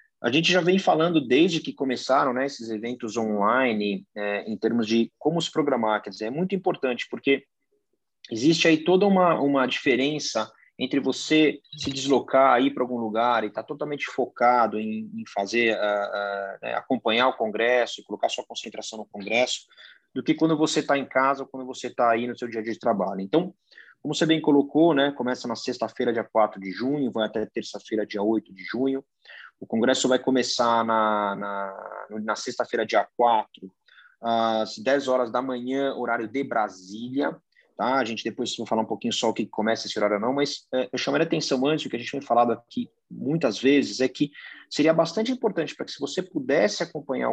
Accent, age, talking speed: Brazilian, 30-49, 200 wpm